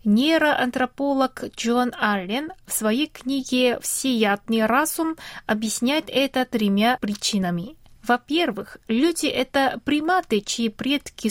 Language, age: Russian, 20-39